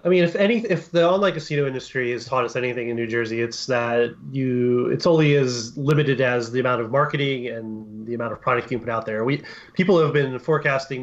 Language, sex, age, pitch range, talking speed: English, male, 30-49, 125-165 Hz, 230 wpm